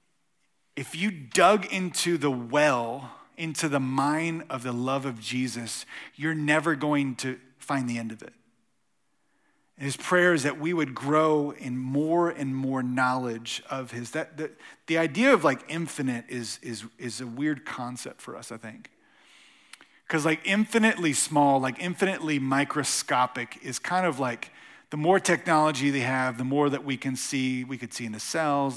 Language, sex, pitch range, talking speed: English, male, 125-165 Hz, 170 wpm